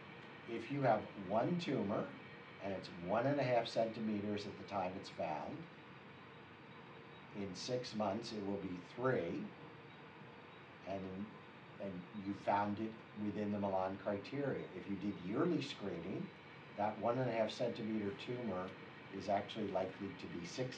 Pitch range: 95-115 Hz